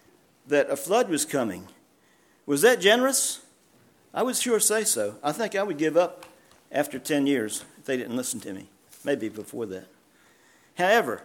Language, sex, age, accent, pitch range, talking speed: English, male, 50-69, American, 140-200 Hz, 170 wpm